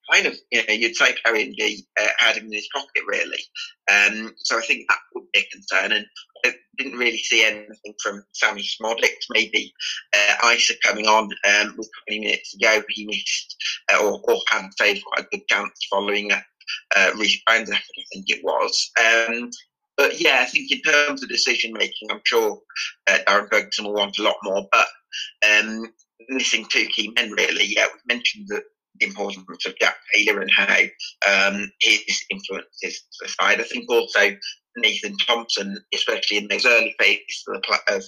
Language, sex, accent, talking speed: English, male, British, 190 wpm